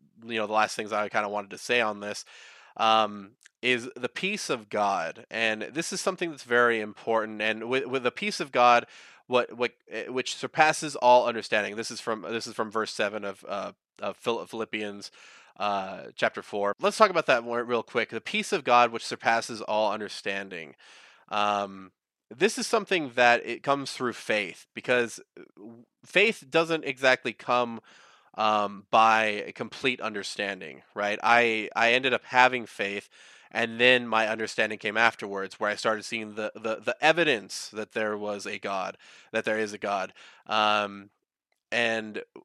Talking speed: 170 wpm